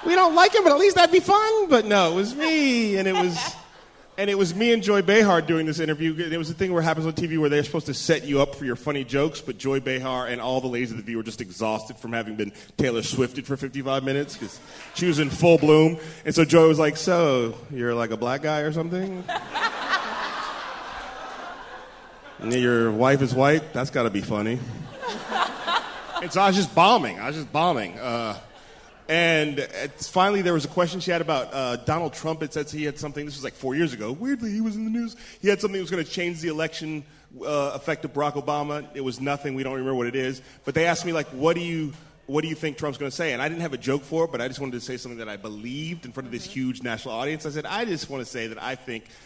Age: 30-49